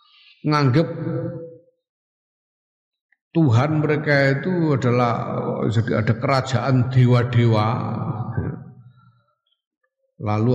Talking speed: 55 wpm